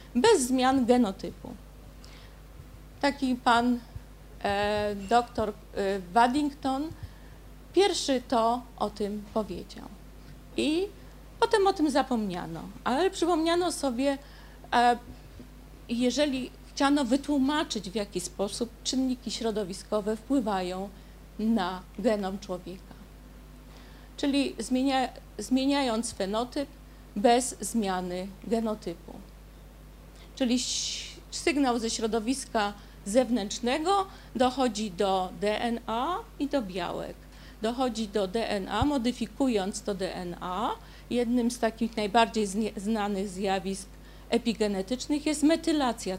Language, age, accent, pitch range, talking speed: Polish, 50-69, native, 205-270 Hz, 90 wpm